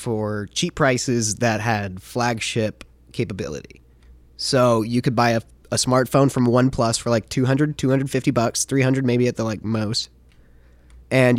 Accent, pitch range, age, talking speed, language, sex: American, 105-130 Hz, 20-39, 150 wpm, English, male